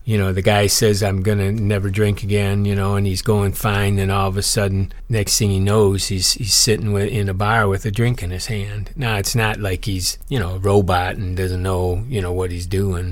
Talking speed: 250 wpm